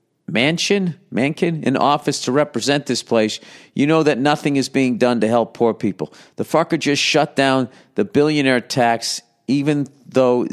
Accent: American